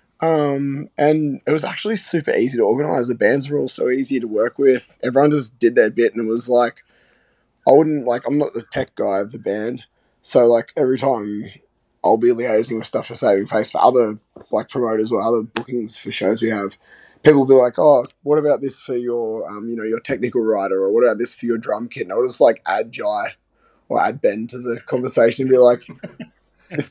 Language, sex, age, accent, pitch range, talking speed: English, male, 20-39, Australian, 115-140 Hz, 225 wpm